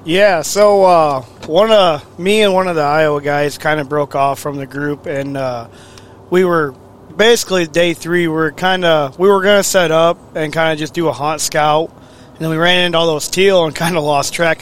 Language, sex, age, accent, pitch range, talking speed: English, male, 20-39, American, 135-165 Hz, 235 wpm